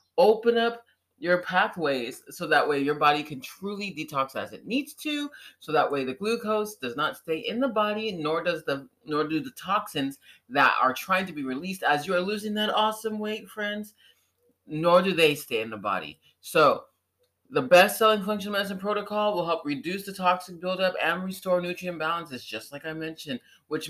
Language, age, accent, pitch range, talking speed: English, 30-49, American, 155-215 Hz, 190 wpm